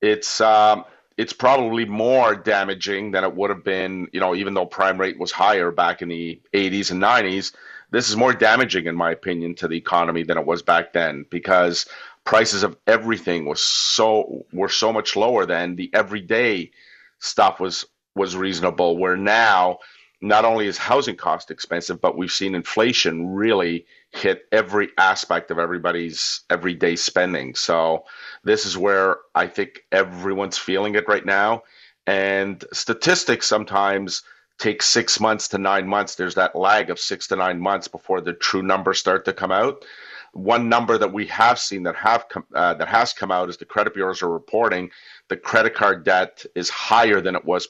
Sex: male